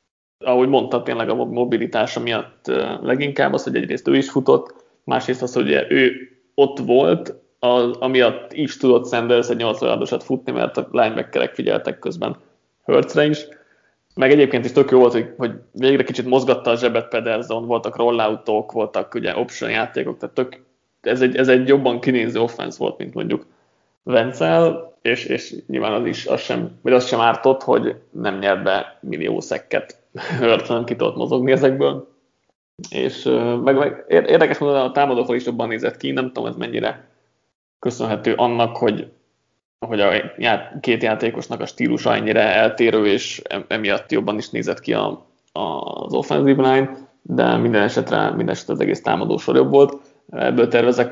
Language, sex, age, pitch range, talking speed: Hungarian, male, 20-39, 115-130 Hz, 165 wpm